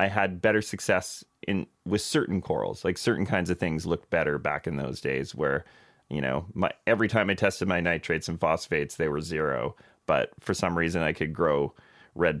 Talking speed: 205 wpm